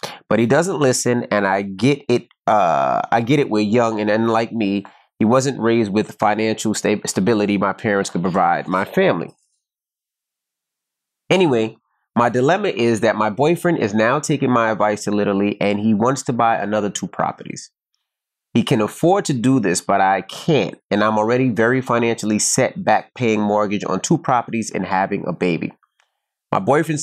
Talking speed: 175 wpm